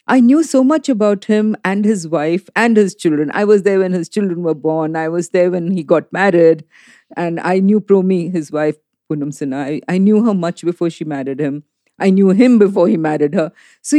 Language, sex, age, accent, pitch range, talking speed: English, female, 50-69, Indian, 170-235 Hz, 225 wpm